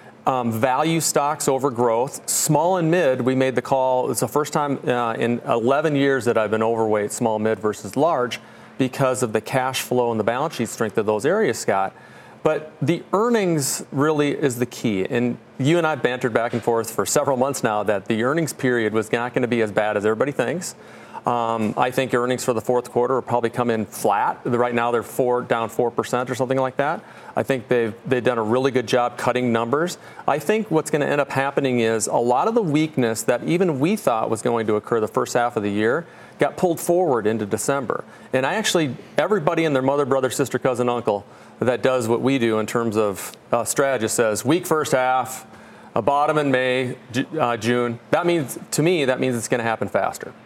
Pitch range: 115-140 Hz